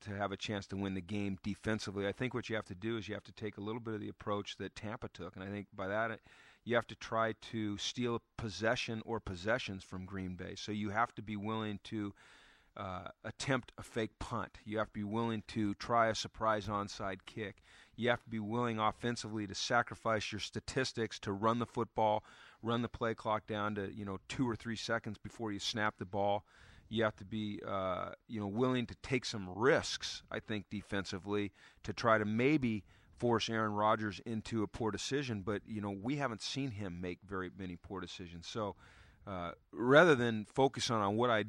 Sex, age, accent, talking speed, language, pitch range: male, 40-59, American, 215 wpm, English, 100-115 Hz